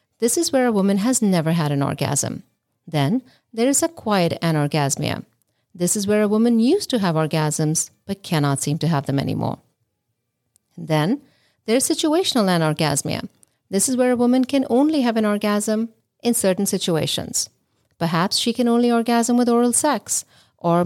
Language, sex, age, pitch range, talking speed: English, female, 50-69, 155-235 Hz, 170 wpm